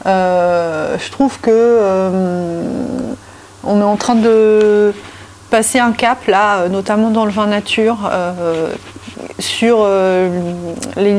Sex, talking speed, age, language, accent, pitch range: female, 120 wpm, 30-49, French, French, 185-220 Hz